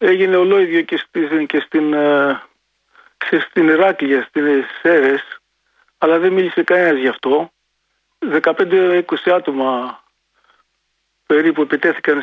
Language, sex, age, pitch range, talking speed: Greek, male, 40-59, 140-205 Hz, 90 wpm